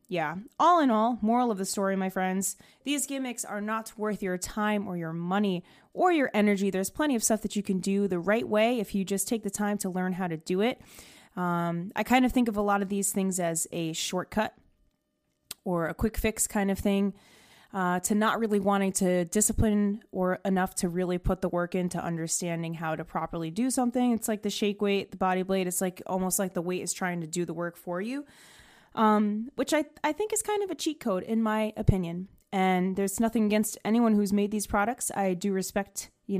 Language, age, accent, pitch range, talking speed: English, 20-39, American, 180-215 Hz, 225 wpm